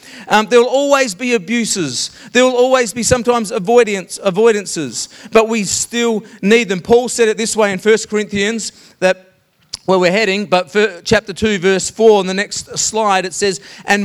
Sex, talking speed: male, 185 wpm